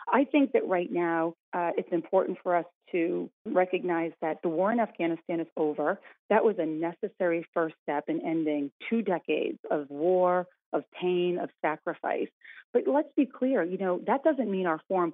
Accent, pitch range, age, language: American, 170-230 Hz, 40-59, English